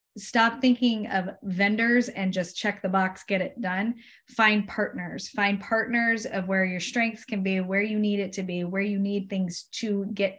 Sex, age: female, 20-39